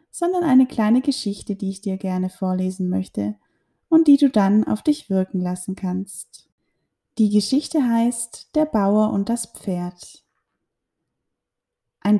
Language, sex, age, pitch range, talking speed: German, female, 10-29, 190-245 Hz, 140 wpm